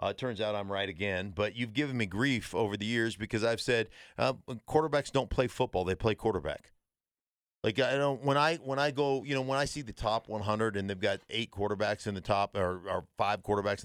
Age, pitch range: 50-69, 105-140 Hz